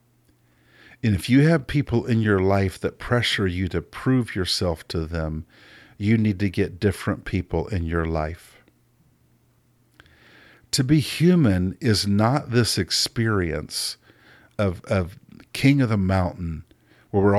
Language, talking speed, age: English, 140 wpm, 50-69